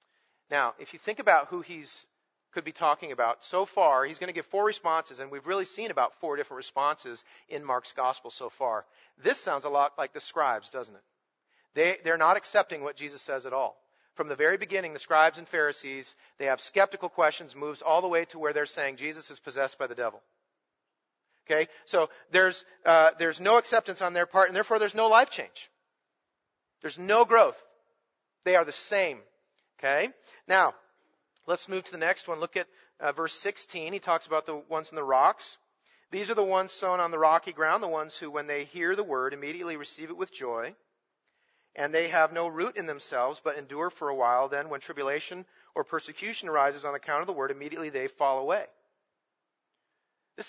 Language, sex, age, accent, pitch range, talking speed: English, male, 40-59, American, 145-195 Hz, 200 wpm